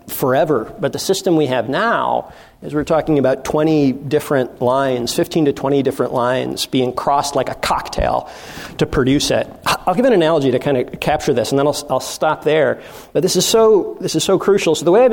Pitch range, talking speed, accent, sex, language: 140-175 Hz, 215 wpm, American, male, English